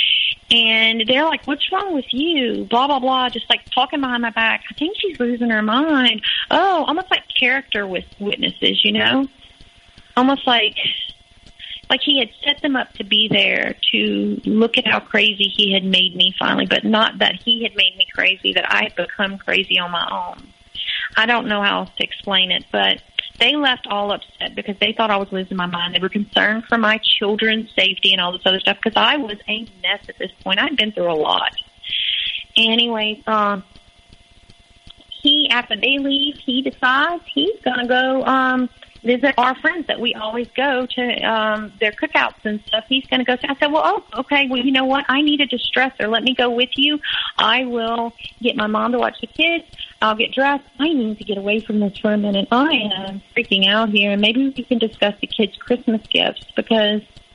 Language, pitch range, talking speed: English, 205-265 Hz, 205 wpm